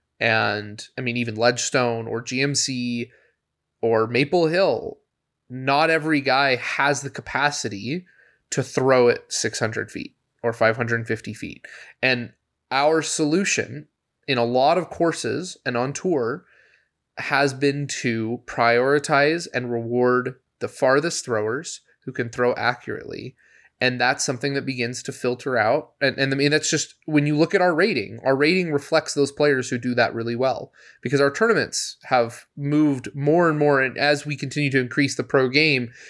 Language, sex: English, male